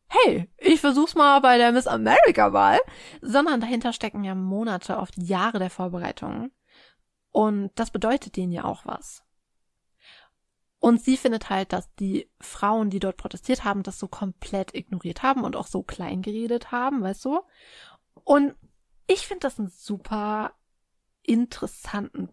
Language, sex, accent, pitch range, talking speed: German, female, German, 205-265 Hz, 150 wpm